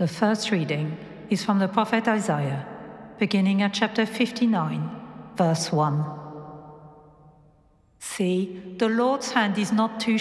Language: English